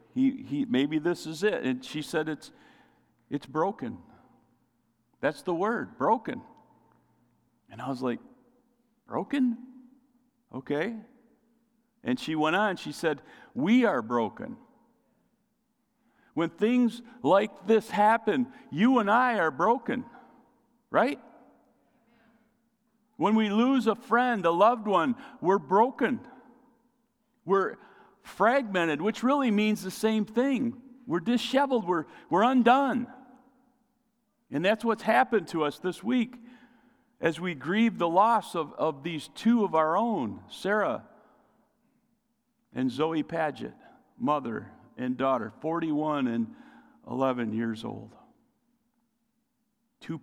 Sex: male